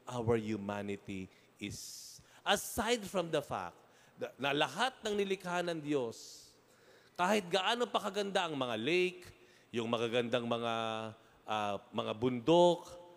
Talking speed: 110 wpm